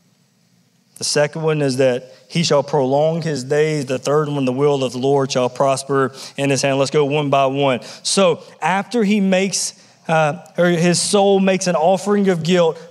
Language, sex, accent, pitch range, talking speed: English, male, American, 165-210 Hz, 190 wpm